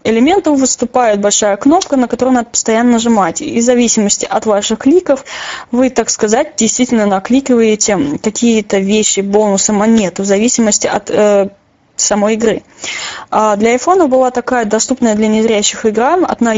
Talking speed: 145 wpm